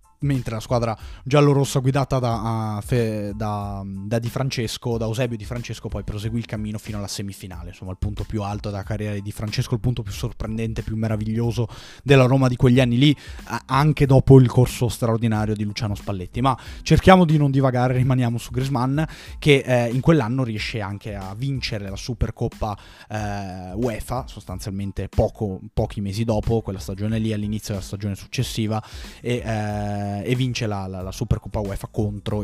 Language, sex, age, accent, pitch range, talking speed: Italian, male, 20-39, native, 100-125 Hz, 165 wpm